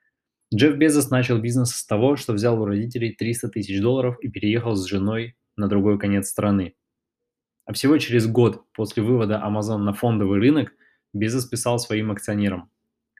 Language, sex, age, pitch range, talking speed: Russian, male, 20-39, 100-120 Hz, 160 wpm